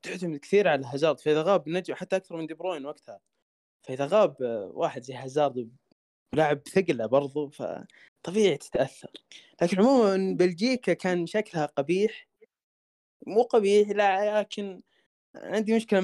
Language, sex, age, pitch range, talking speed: Arabic, male, 20-39, 125-175 Hz, 130 wpm